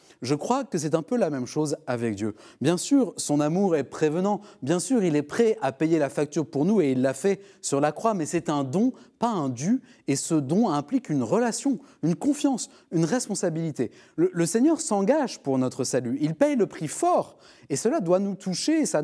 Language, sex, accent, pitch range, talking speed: French, male, French, 145-225 Hz, 220 wpm